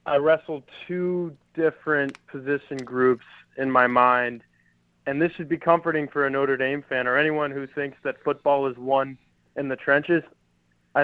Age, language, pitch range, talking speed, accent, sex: 20-39, English, 130-165 Hz, 170 wpm, American, male